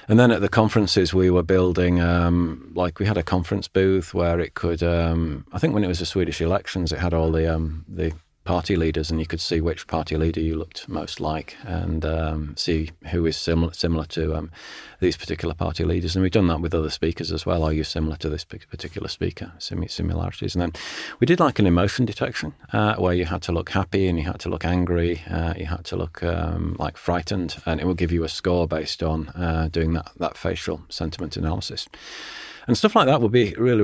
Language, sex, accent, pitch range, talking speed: Swedish, male, British, 80-95 Hz, 230 wpm